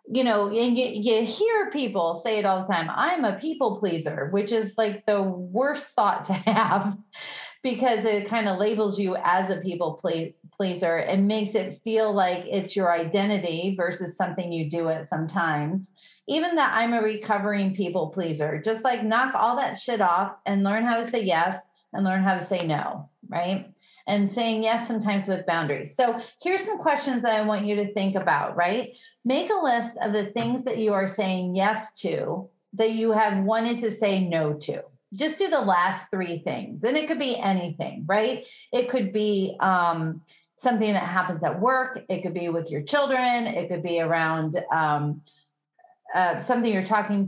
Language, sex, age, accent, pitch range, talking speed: English, female, 30-49, American, 180-235 Hz, 190 wpm